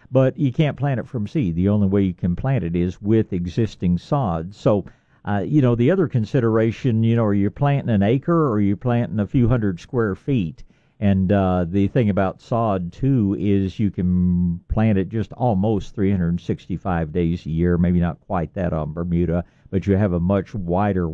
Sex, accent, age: male, American, 50-69